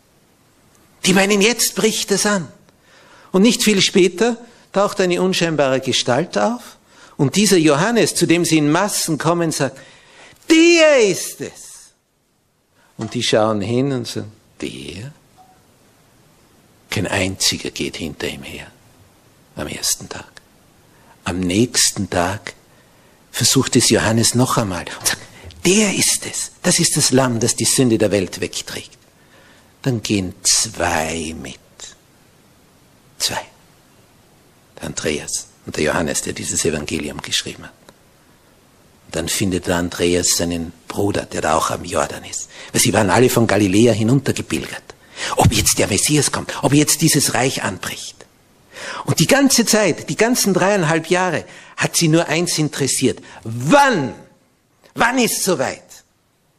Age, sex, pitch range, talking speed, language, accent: 60-79, male, 110-180 Hz, 135 wpm, German, Austrian